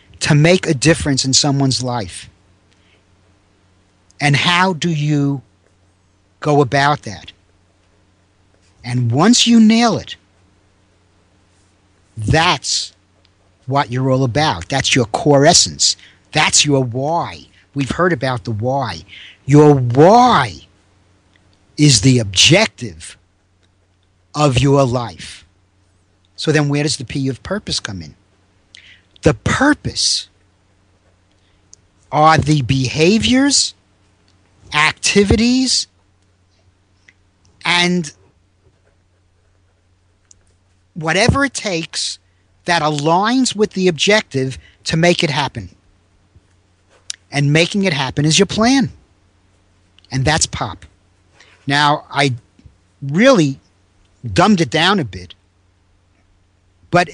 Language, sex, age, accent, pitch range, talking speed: English, male, 50-69, American, 95-150 Hz, 95 wpm